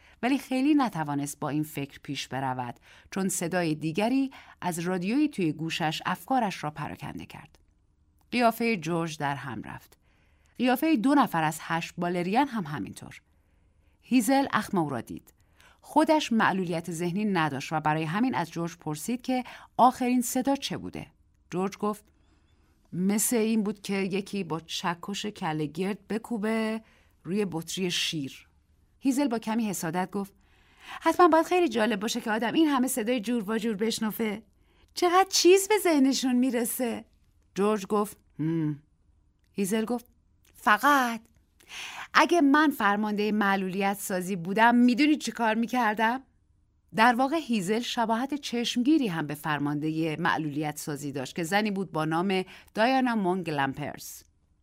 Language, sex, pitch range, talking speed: Persian, female, 155-240 Hz, 135 wpm